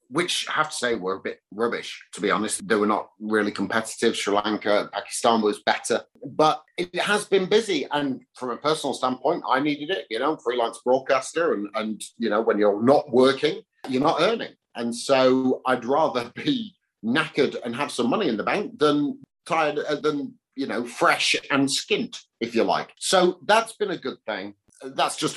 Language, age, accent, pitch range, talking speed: English, 30-49, British, 110-155 Hz, 195 wpm